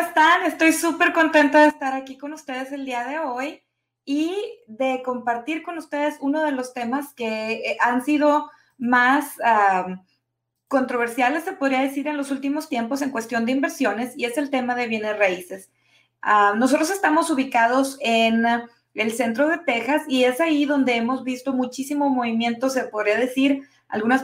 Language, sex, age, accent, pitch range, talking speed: English, female, 20-39, Mexican, 225-275 Hz, 165 wpm